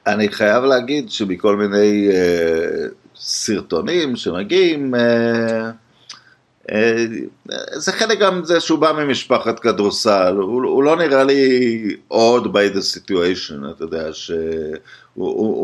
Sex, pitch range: male, 95-120 Hz